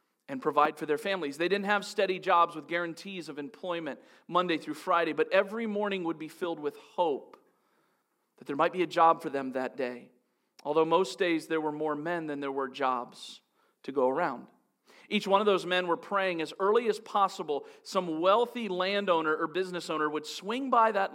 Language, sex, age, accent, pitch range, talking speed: English, male, 40-59, American, 160-200 Hz, 200 wpm